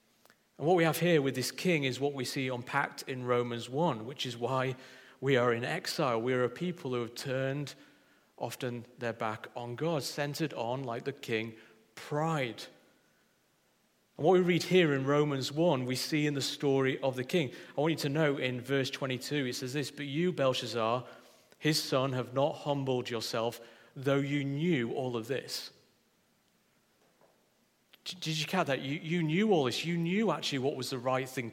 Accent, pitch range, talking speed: British, 125-150 Hz, 190 wpm